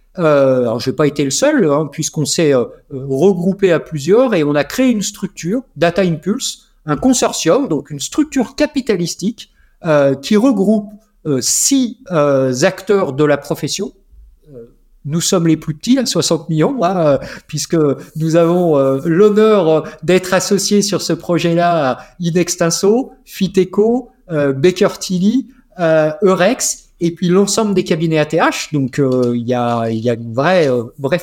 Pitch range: 150-210 Hz